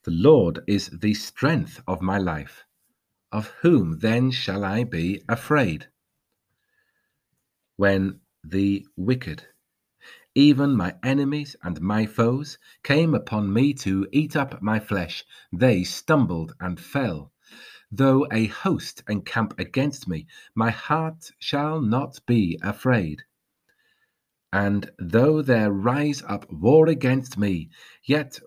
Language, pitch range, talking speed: English, 100-145 Hz, 120 wpm